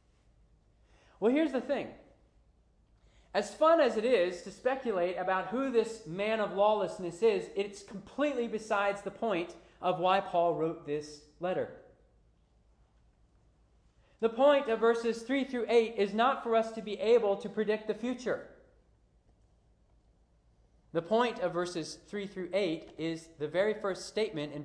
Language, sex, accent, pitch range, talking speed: English, male, American, 165-235 Hz, 145 wpm